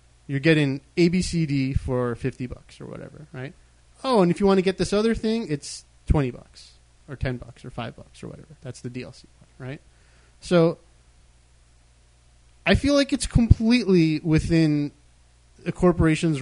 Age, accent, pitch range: 30-49, American, 125-170 Hz